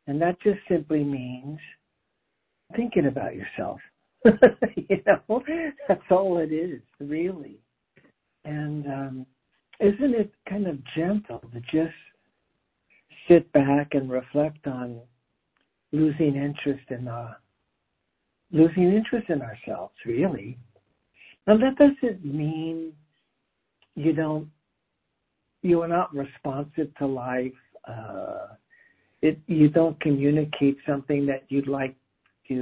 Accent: American